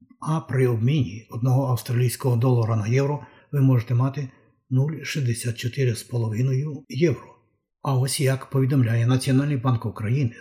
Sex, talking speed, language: male, 115 wpm, Ukrainian